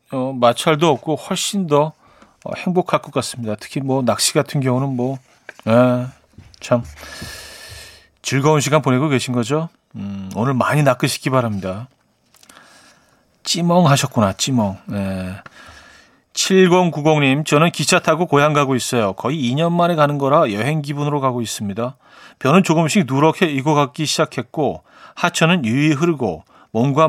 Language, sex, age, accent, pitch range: Korean, male, 40-59, native, 120-160 Hz